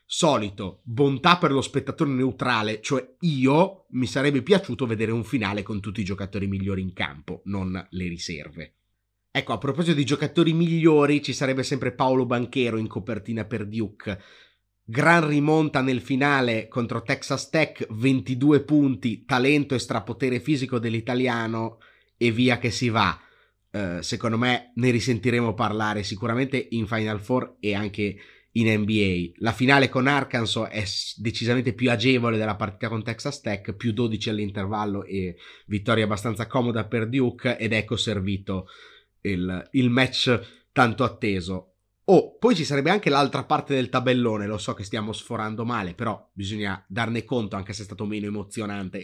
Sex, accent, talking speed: male, native, 155 wpm